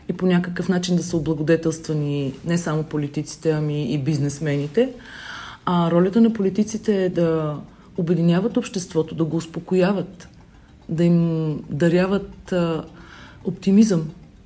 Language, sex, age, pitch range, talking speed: Bulgarian, female, 40-59, 165-200 Hz, 115 wpm